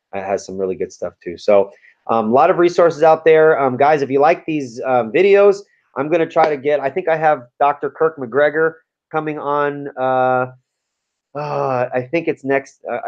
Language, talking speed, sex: English, 200 wpm, male